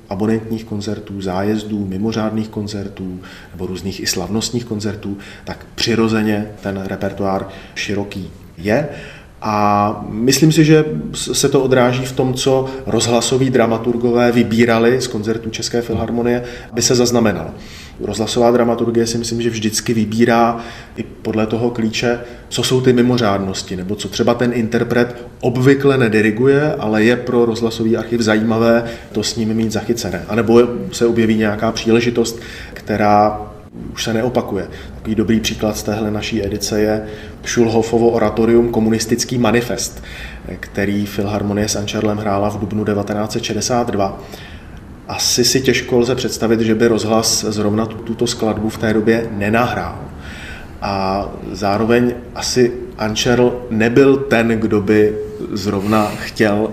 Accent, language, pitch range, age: native, Czech, 105-120 Hz, 30-49